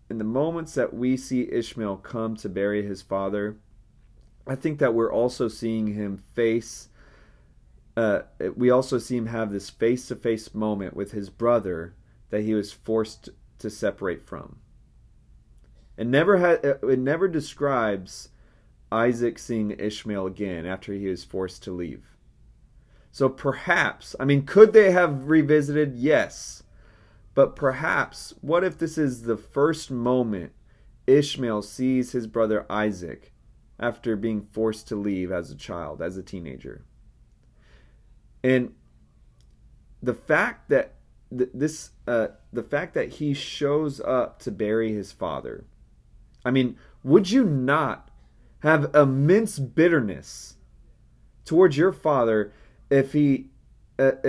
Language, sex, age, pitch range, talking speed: English, male, 30-49, 105-140 Hz, 130 wpm